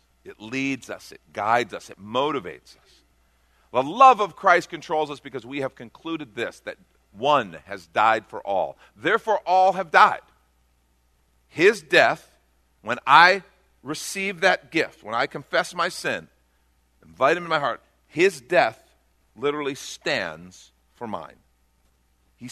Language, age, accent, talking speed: English, 50-69, American, 145 wpm